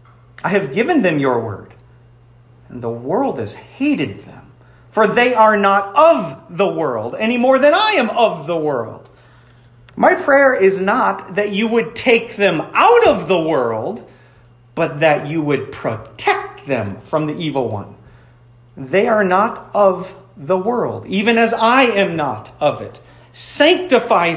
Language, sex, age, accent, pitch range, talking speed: English, male, 40-59, American, 120-200 Hz, 160 wpm